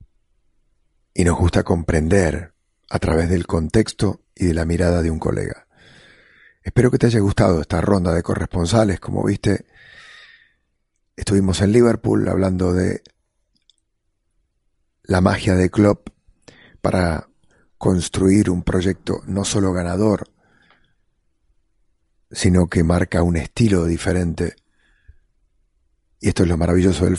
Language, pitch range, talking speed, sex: English, 85-100 Hz, 120 wpm, male